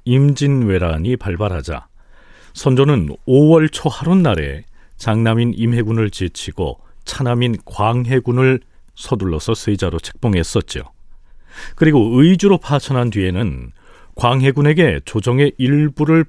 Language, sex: Korean, male